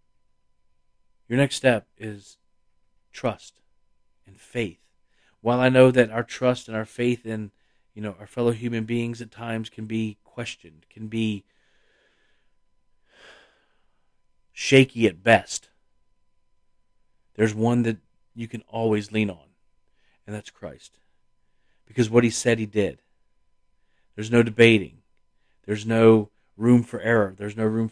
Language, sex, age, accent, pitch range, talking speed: English, male, 40-59, American, 100-115 Hz, 130 wpm